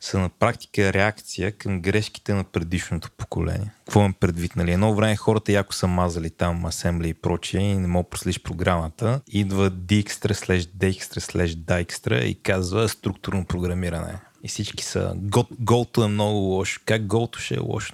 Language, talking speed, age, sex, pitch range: Bulgarian, 160 wpm, 30-49, male, 90-110 Hz